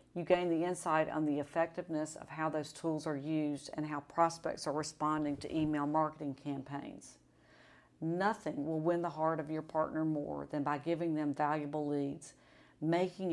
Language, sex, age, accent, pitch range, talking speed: English, female, 50-69, American, 150-170 Hz, 170 wpm